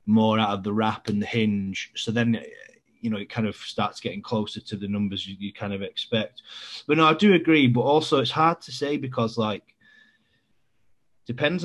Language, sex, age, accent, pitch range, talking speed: English, male, 30-49, British, 105-125 Hz, 205 wpm